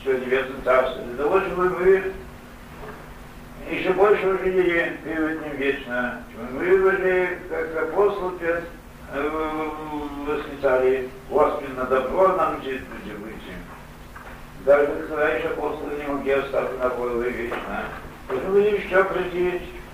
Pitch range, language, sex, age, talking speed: 130-170 Hz, English, male, 60-79, 115 wpm